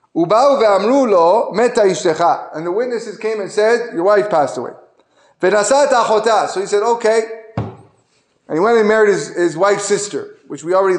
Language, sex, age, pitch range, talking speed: English, male, 30-49, 180-255 Hz, 140 wpm